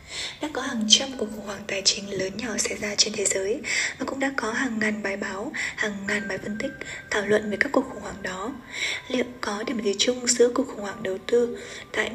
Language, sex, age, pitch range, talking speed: Vietnamese, female, 20-39, 210-240 Hz, 240 wpm